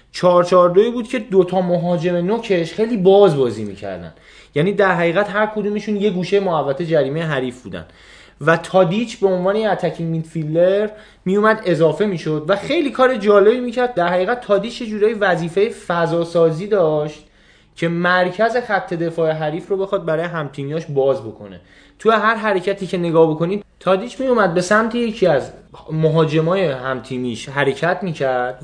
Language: Persian